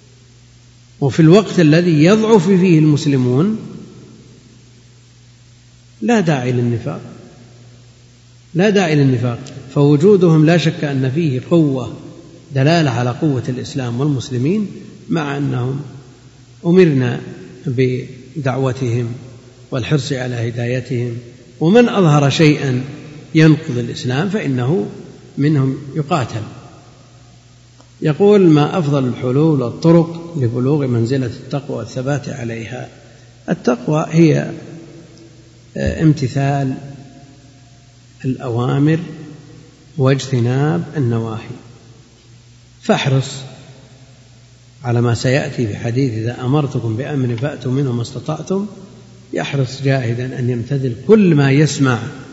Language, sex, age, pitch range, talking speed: Arabic, male, 50-69, 120-150 Hz, 85 wpm